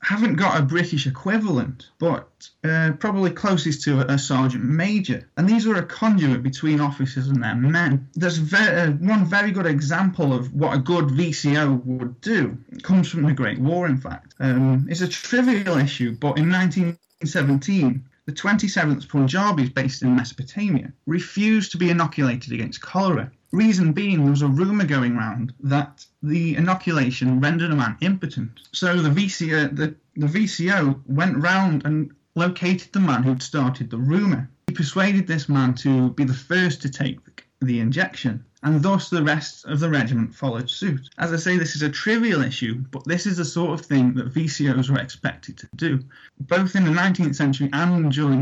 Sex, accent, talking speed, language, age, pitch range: male, British, 175 wpm, English, 30-49, 135-180 Hz